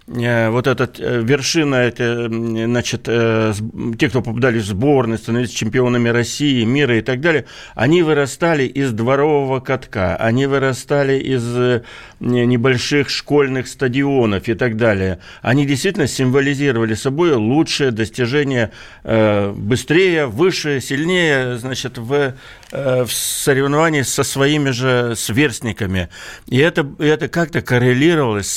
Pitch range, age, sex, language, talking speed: 120-145 Hz, 60-79, male, Russian, 120 wpm